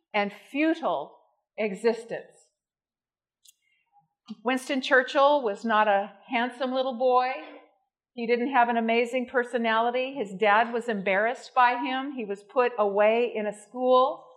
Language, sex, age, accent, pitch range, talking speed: English, female, 50-69, American, 220-265 Hz, 125 wpm